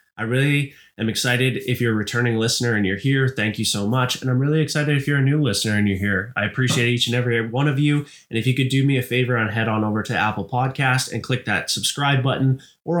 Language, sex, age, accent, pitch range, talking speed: English, male, 20-39, American, 110-130 Hz, 265 wpm